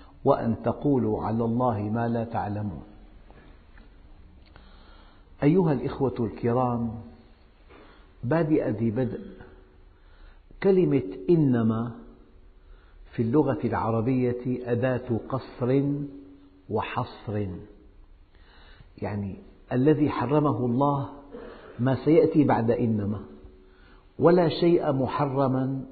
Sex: male